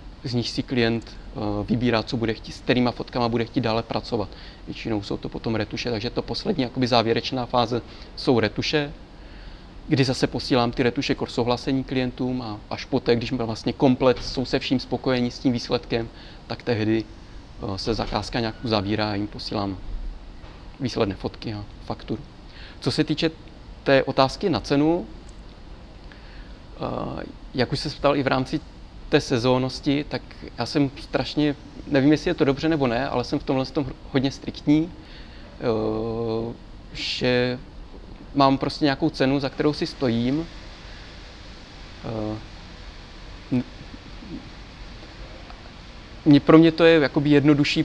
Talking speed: 135 wpm